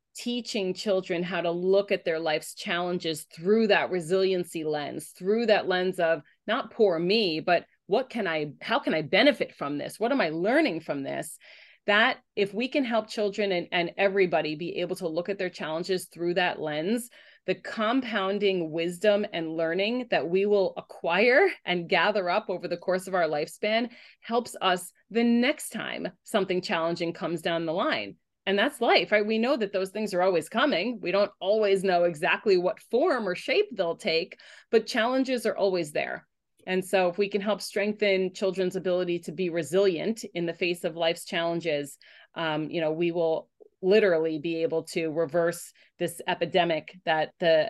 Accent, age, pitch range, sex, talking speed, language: American, 30-49, 165-210 Hz, female, 180 wpm, English